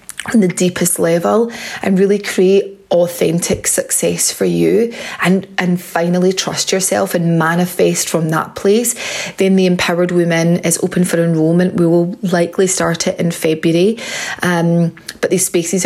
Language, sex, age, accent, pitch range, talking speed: English, female, 30-49, British, 170-190 Hz, 150 wpm